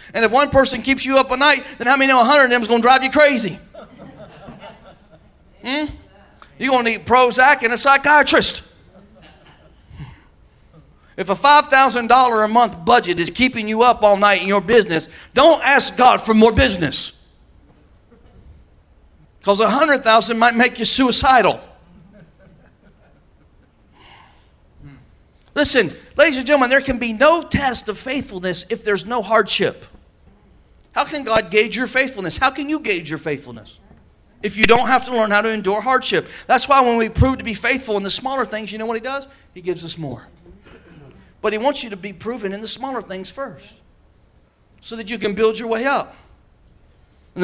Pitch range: 200-265 Hz